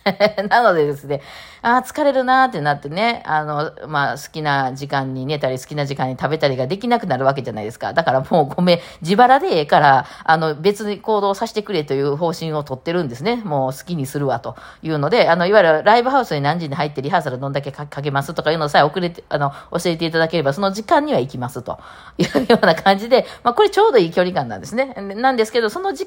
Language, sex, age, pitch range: Japanese, female, 40-59, 145-205 Hz